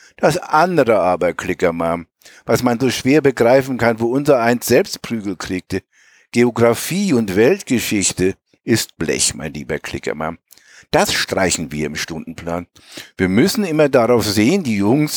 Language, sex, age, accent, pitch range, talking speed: German, male, 60-79, German, 105-150 Hz, 140 wpm